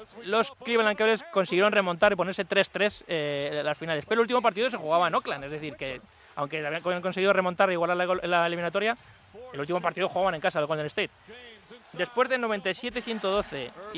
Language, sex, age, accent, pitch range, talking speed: Spanish, male, 30-49, Spanish, 160-220 Hz, 195 wpm